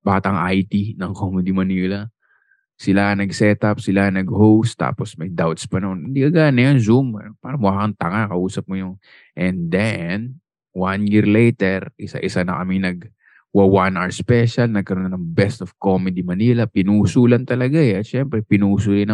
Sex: male